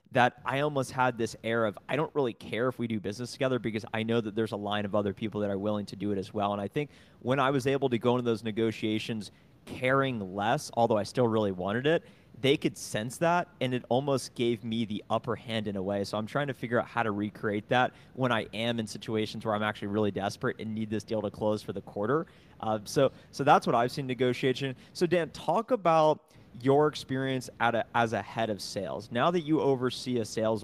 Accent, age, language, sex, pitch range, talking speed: American, 30-49, English, male, 105-130 Hz, 245 wpm